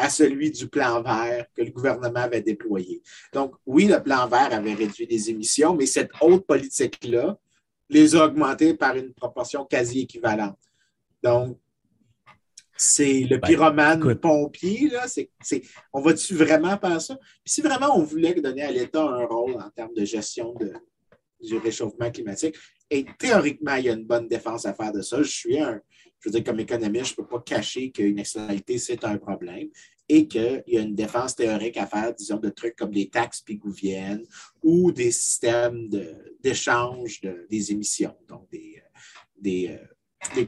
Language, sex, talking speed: French, male, 175 wpm